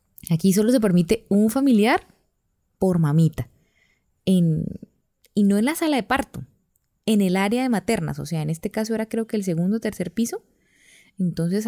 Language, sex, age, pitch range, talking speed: Spanish, female, 20-39, 180-220 Hz, 180 wpm